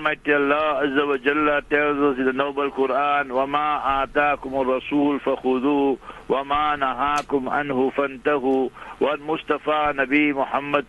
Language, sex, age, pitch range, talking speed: English, male, 60-79, 135-145 Hz, 145 wpm